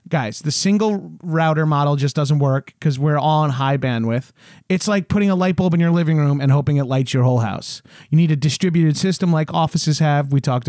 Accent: American